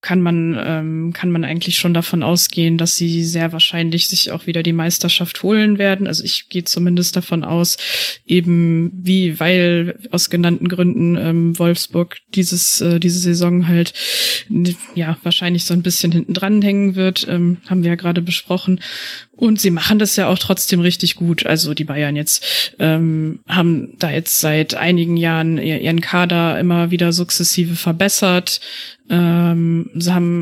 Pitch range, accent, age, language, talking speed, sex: 170-190 Hz, German, 20-39, German, 165 wpm, female